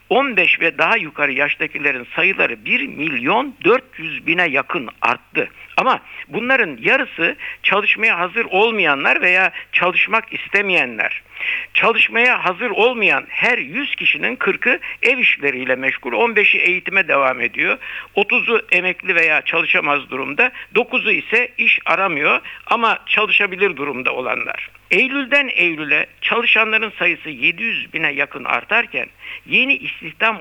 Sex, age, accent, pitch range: male, 60-79, native, 170-240 Hz